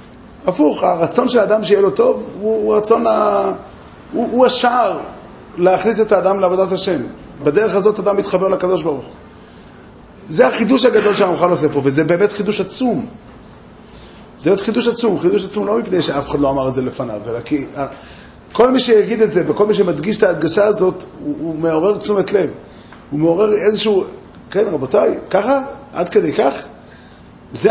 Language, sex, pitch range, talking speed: Hebrew, male, 155-220 Hz, 170 wpm